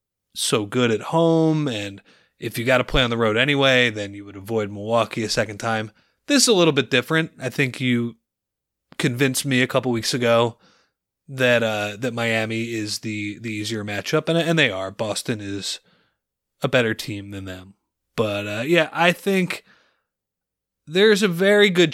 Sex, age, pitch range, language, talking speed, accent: male, 30-49, 110-145 Hz, English, 180 wpm, American